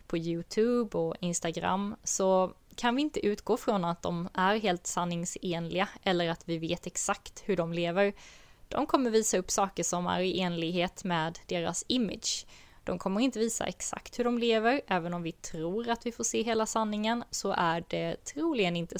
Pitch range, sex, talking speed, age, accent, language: 175-210 Hz, female, 185 wpm, 20-39, Swedish, English